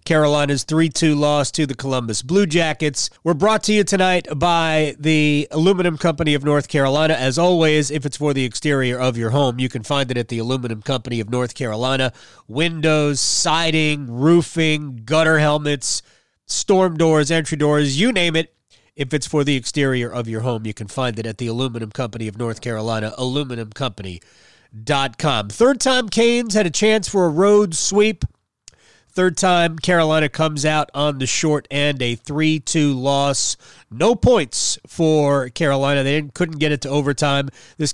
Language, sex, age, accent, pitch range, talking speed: English, male, 30-49, American, 125-160 Hz, 170 wpm